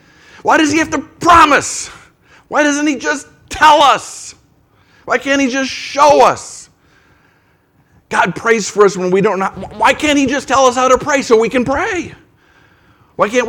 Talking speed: 180 wpm